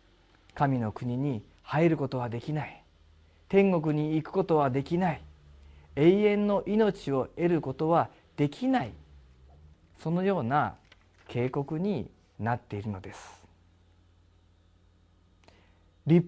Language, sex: Japanese, male